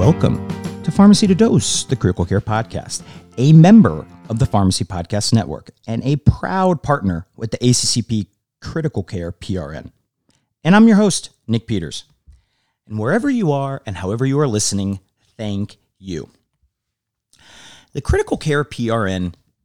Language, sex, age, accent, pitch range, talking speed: English, male, 40-59, American, 100-145 Hz, 145 wpm